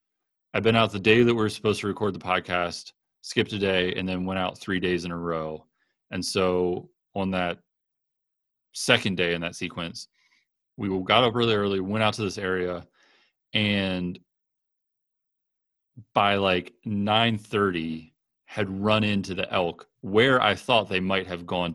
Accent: American